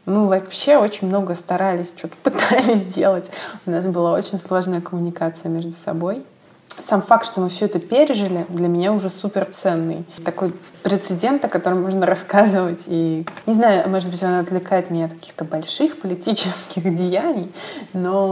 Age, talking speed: 20-39, 155 wpm